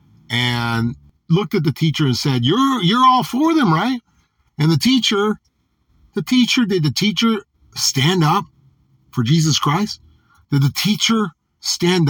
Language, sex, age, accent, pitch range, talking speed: English, male, 50-69, American, 125-185 Hz, 150 wpm